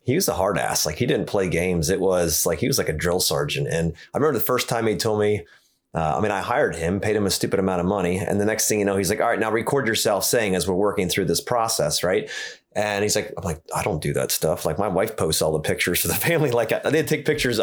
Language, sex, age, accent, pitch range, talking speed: English, male, 30-49, American, 95-140 Hz, 295 wpm